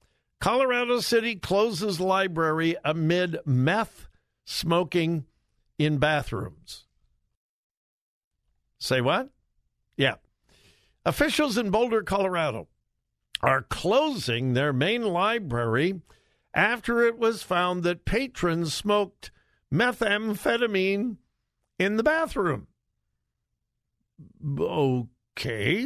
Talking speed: 75 wpm